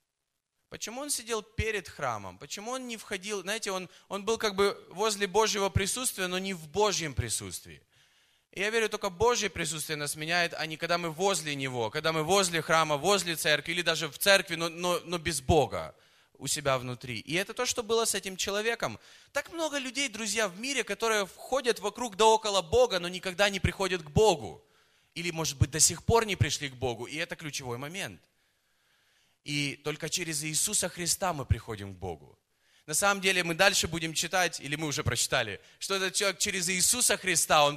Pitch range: 155-205 Hz